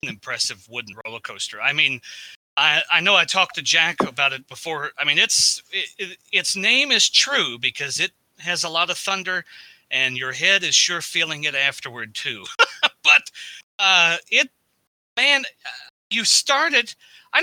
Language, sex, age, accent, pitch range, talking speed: English, male, 30-49, American, 125-195 Hz, 160 wpm